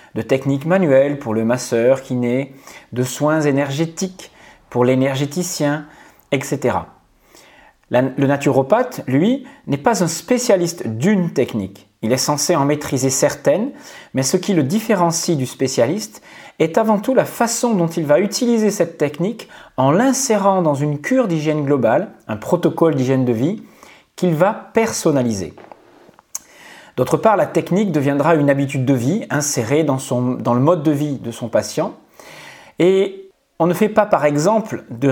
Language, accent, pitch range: English, French, 135-190 Hz